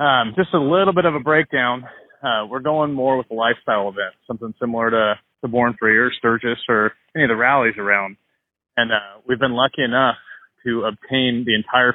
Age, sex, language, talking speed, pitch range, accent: 30-49, male, English, 200 wpm, 115-145 Hz, American